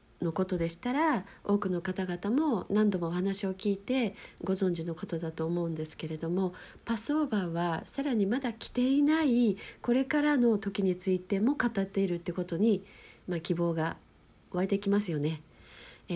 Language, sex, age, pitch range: Japanese, female, 50-69, 170-220 Hz